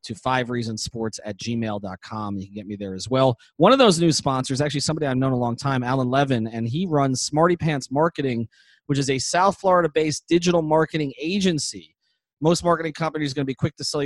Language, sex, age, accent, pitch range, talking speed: English, male, 30-49, American, 120-155 Hz, 210 wpm